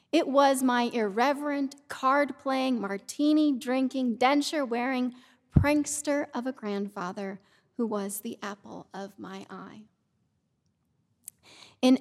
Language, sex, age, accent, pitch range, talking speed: English, female, 30-49, American, 215-265 Hz, 95 wpm